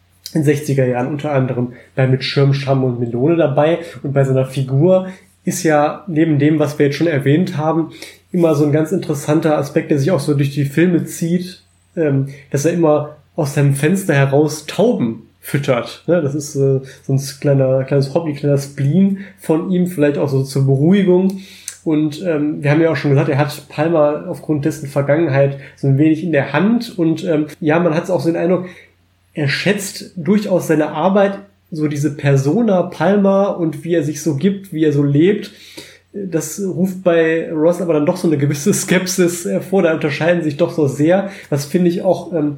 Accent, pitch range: German, 140-170 Hz